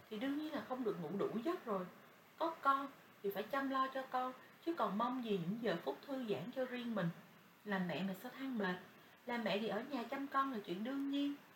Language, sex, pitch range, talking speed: Vietnamese, female, 185-255 Hz, 245 wpm